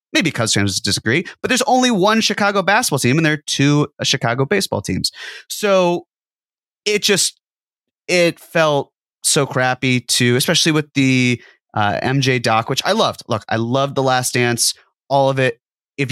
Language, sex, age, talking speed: English, male, 30-49, 165 wpm